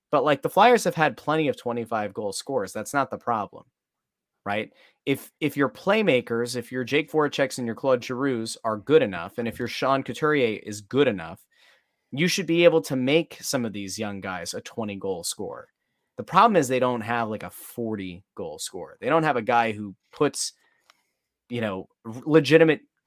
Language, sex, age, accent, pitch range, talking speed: English, male, 30-49, American, 110-135 Hz, 185 wpm